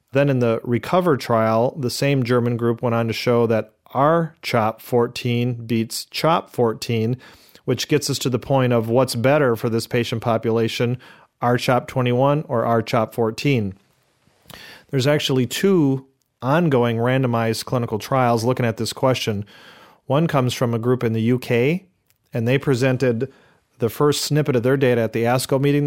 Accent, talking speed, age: American, 155 wpm, 40-59